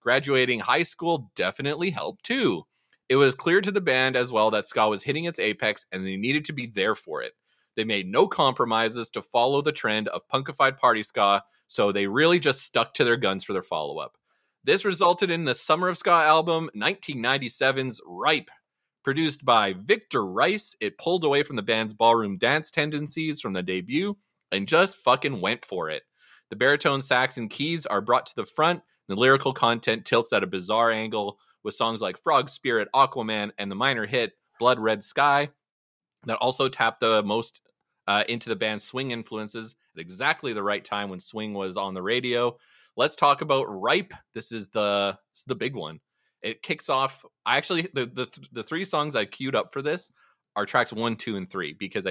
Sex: male